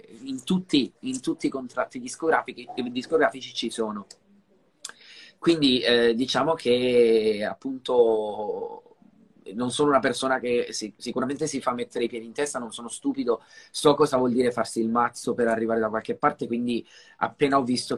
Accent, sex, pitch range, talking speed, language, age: native, male, 115-140 Hz, 160 wpm, Italian, 20-39